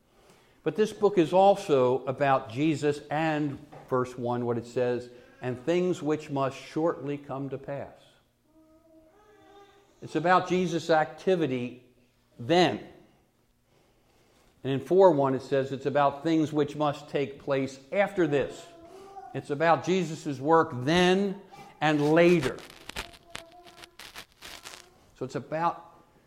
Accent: American